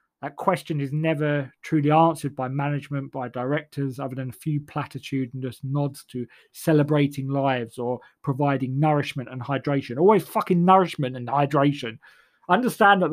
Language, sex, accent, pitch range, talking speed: English, male, British, 125-150 Hz, 150 wpm